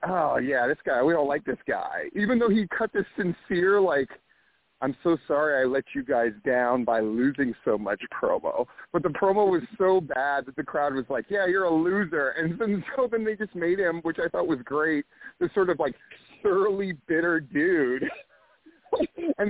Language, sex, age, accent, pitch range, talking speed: English, male, 40-59, American, 150-230 Hz, 195 wpm